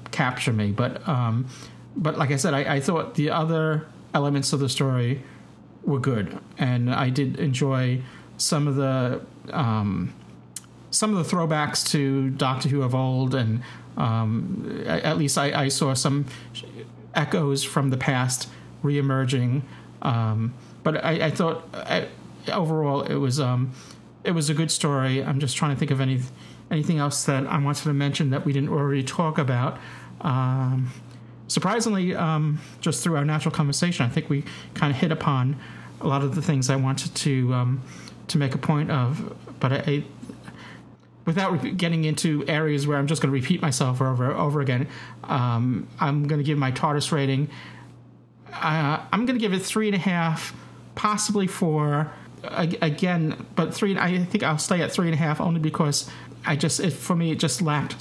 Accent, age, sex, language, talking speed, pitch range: American, 40-59, male, English, 180 wpm, 130-160 Hz